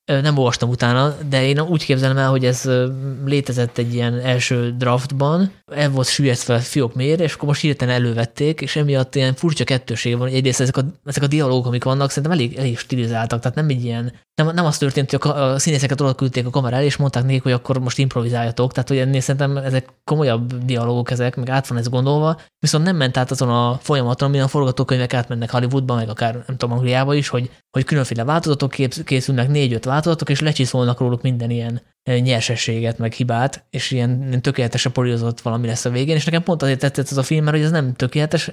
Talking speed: 205 wpm